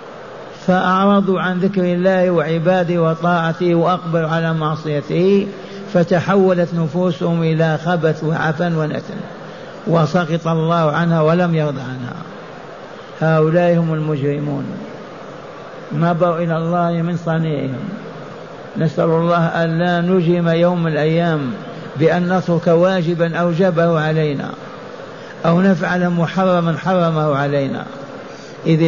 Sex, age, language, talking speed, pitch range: male, 50-69, Arabic, 100 wpm, 155-175 Hz